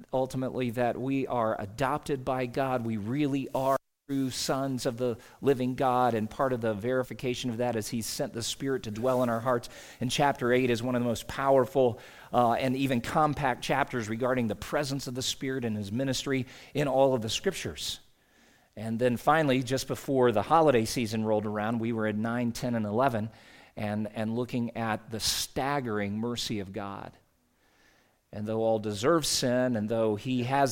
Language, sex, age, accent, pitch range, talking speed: English, male, 40-59, American, 115-135 Hz, 190 wpm